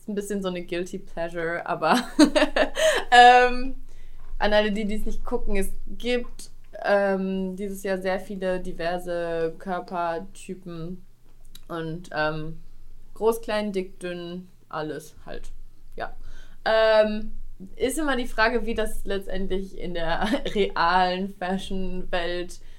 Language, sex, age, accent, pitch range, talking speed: German, female, 20-39, German, 165-205 Hz, 120 wpm